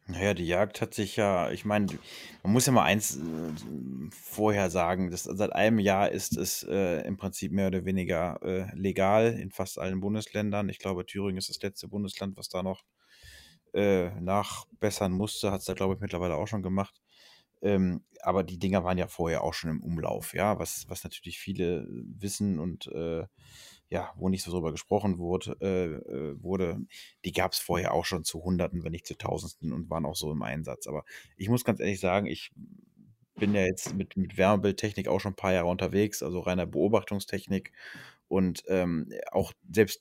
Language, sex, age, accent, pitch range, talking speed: German, male, 30-49, German, 90-100 Hz, 190 wpm